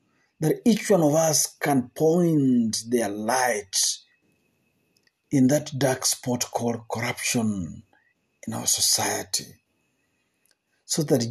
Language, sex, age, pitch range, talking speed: Swahili, male, 50-69, 125-175 Hz, 105 wpm